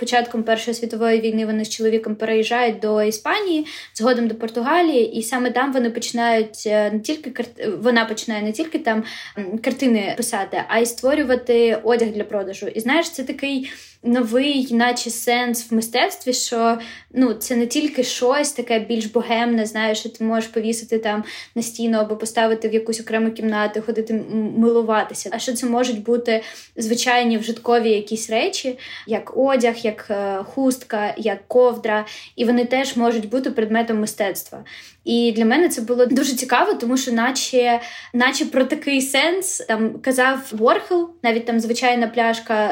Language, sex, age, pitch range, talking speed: Ukrainian, female, 20-39, 225-250 Hz, 155 wpm